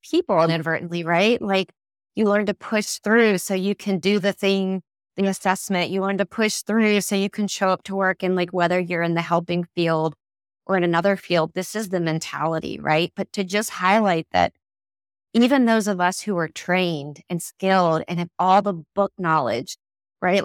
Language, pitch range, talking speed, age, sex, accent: English, 165-210 Hz, 195 wpm, 30-49, female, American